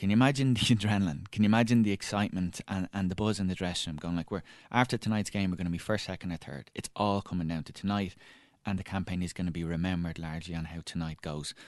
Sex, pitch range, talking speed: male, 85-105 Hz, 260 wpm